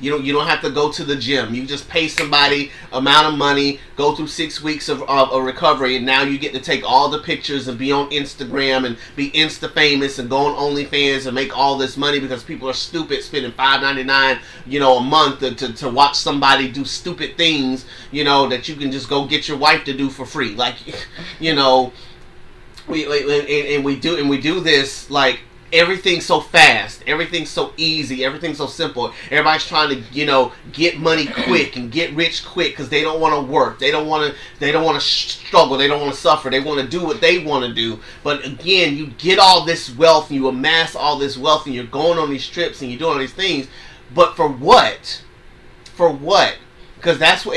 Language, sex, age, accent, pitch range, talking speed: English, male, 30-49, American, 135-155 Hz, 225 wpm